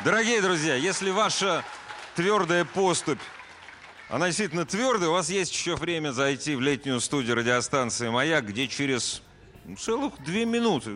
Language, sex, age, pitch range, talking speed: Russian, male, 30-49, 115-170 Hz, 135 wpm